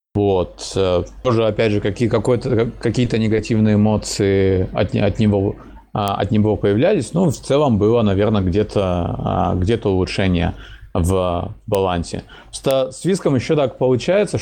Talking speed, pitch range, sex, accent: 105 wpm, 100-120 Hz, male, native